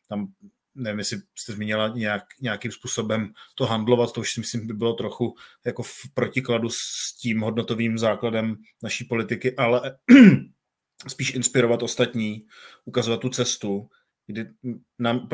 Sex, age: male, 30-49